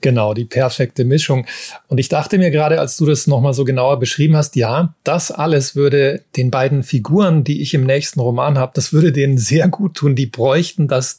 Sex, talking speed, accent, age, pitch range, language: male, 210 wpm, German, 30-49, 130-160 Hz, German